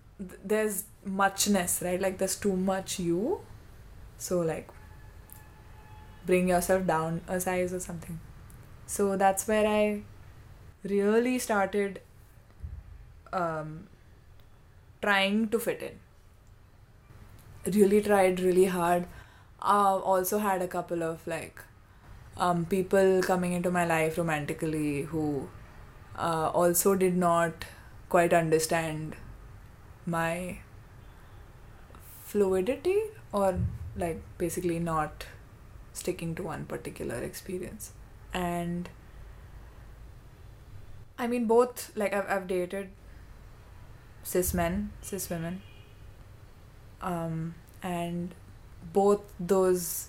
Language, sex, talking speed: English, female, 95 wpm